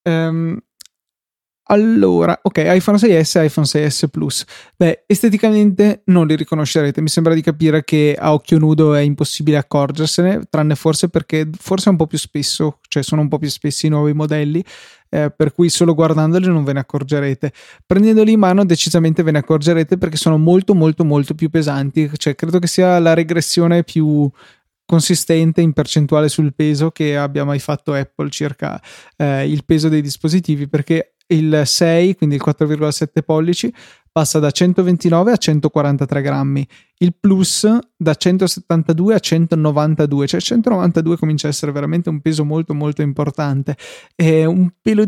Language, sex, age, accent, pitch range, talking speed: Italian, male, 20-39, native, 150-170 Hz, 160 wpm